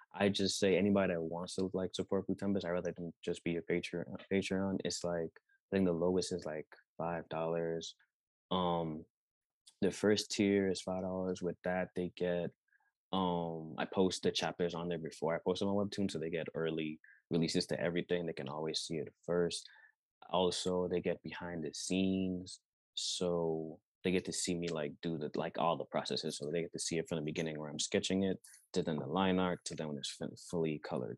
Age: 20-39